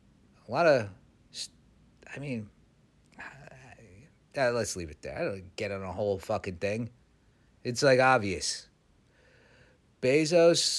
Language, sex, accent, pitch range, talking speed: English, male, American, 100-150 Hz, 120 wpm